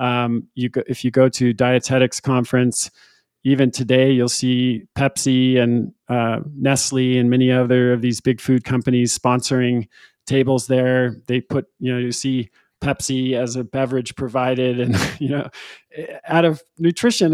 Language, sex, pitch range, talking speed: English, male, 120-135 Hz, 155 wpm